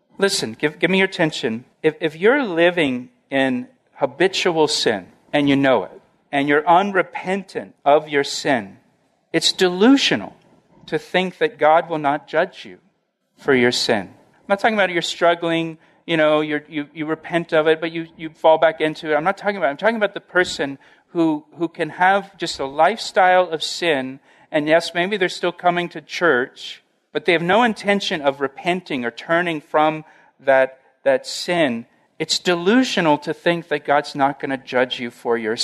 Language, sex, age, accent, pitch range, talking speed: English, male, 50-69, American, 150-185 Hz, 185 wpm